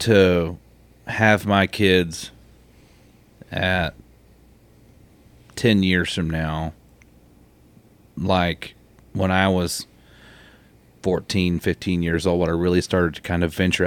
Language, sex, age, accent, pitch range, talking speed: English, male, 30-49, American, 85-105 Hz, 110 wpm